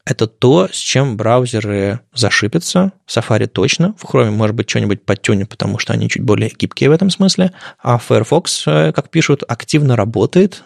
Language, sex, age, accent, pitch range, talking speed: Russian, male, 20-39, native, 110-145 Hz, 170 wpm